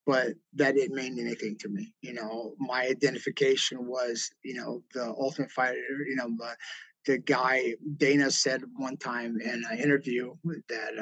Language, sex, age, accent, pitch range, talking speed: English, male, 30-49, American, 125-145 Hz, 165 wpm